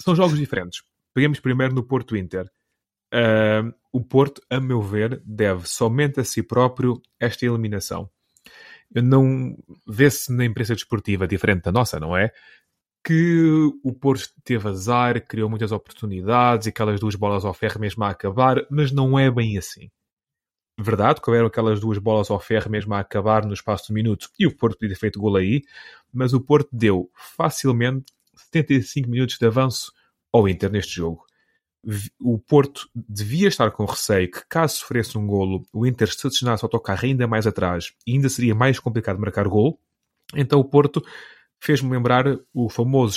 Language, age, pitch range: Portuguese, 20-39, 105-130 Hz